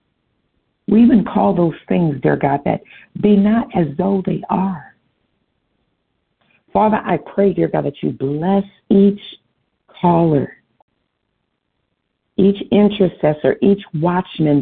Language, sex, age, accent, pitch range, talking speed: English, female, 50-69, American, 160-210 Hz, 115 wpm